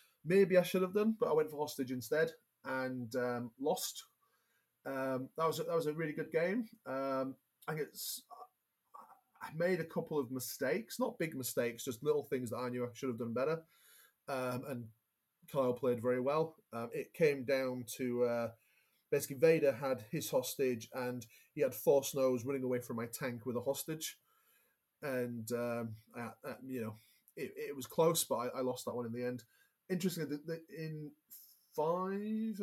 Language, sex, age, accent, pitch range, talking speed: English, male, 30-49, British, 120-160 Hz, 185 wpm